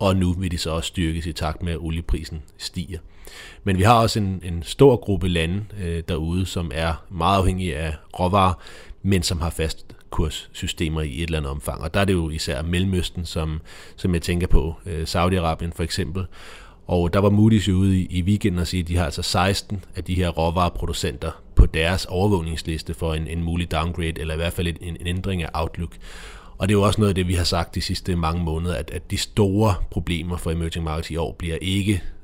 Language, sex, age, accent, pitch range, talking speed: Danish, male, 30-49, native, 80-95 Hz, 225 wpm